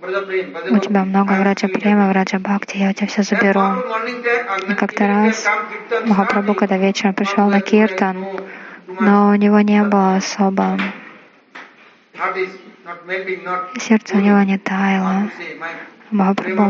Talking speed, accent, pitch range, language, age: 120 wpm, Indian, 190-210 Hz, Russian, 20-39